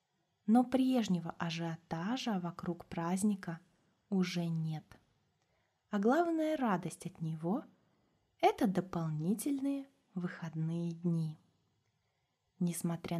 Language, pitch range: Russian, 170-205 Hz